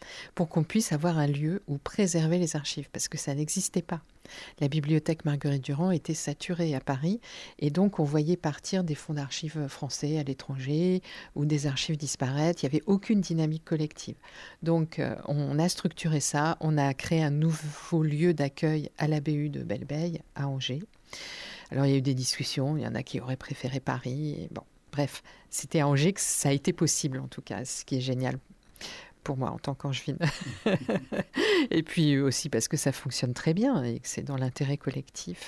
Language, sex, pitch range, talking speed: French, female, 145-180 Hz, 195 wpm